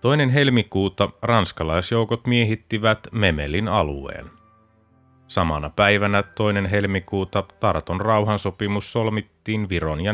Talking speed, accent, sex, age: 90 wpm, native, male, 30-49